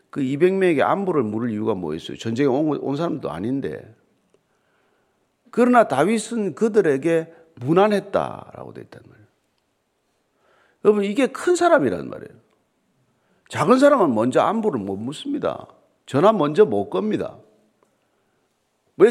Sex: male